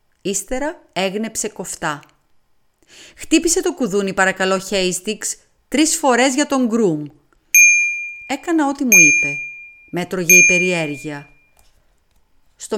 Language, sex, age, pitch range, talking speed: Greek, female, 30-49, 165-240 Hz, 100 wpm